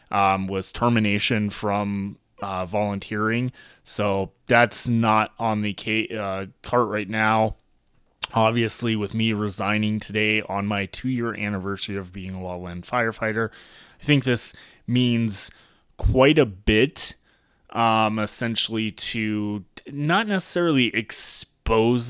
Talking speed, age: 115 wpm, 20-39